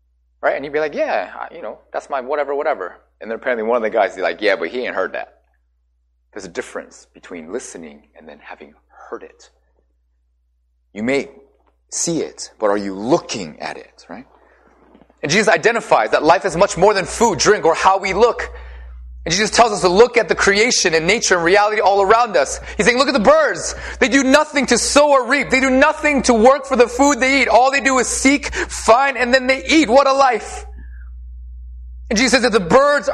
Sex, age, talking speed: male, 30-49, 220 wpm